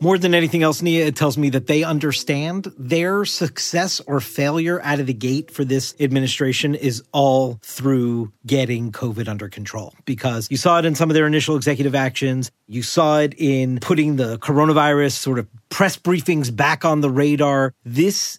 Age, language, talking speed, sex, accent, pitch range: 40-59, English, 185 wpm, male, American, 135-170 Hz